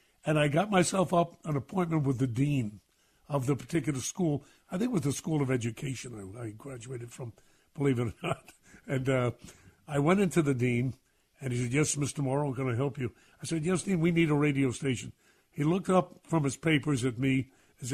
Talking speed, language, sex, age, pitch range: 215 wpm, English, male, 60-79, 130-165 Hz